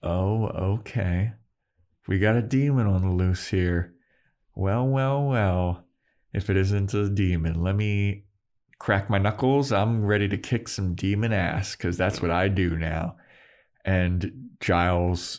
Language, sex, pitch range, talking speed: English, male, 95-125 Hz, 150 wpm